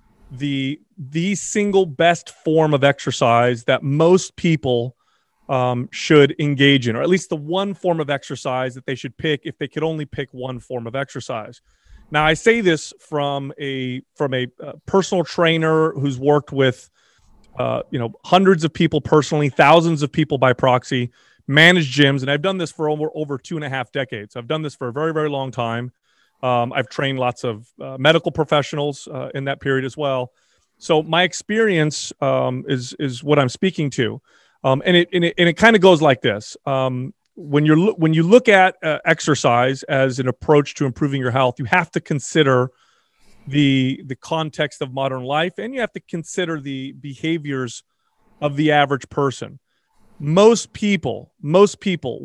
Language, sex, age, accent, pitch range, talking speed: English, male, 30-49, American, 130-165 Hz, 185 wpm